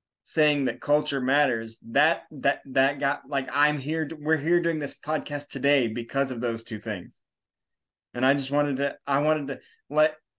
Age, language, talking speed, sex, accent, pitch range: 20-39, English, 185 wpm, male, American, 130-160 Hz